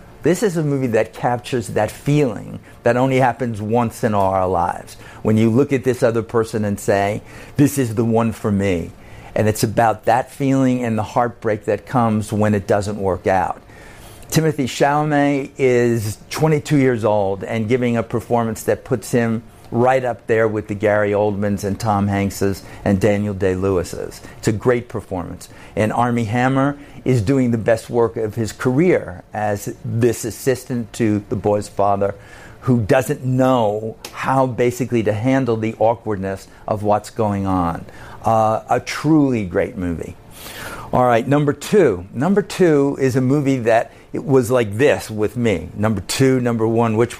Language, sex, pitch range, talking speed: English, male, 105-130 Hz, 170 wpm